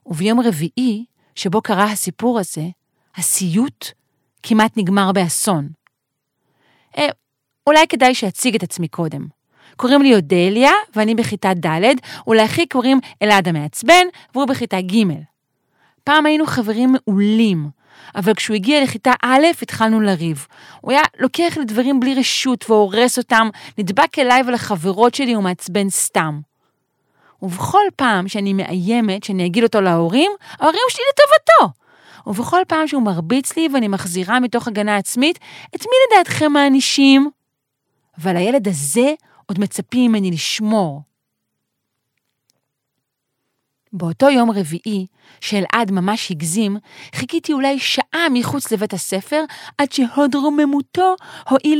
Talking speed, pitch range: 120 wpm, 185-270 Hz